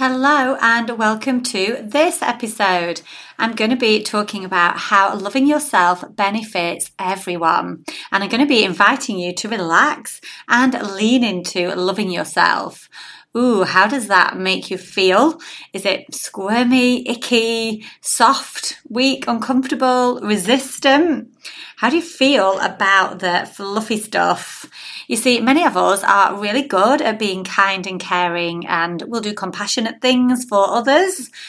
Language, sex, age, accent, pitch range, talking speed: English, female, 30-49, British, 195-255 Hz, 140 wpm